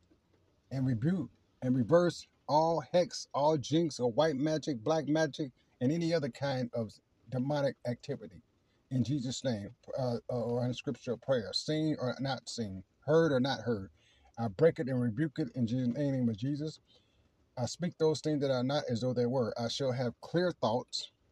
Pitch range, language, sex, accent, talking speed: 120-155 Hz, English, male, American, 180 wpm